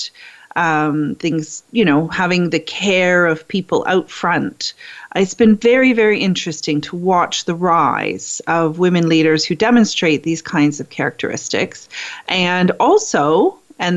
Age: 30-49